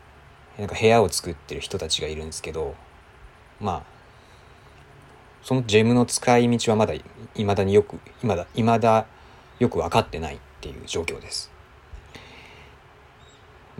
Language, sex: Japanese, male